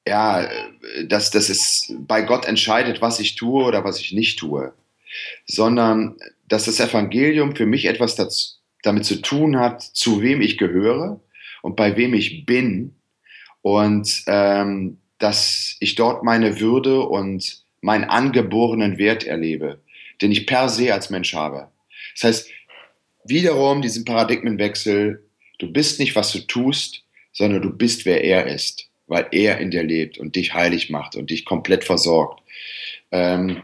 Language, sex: German, male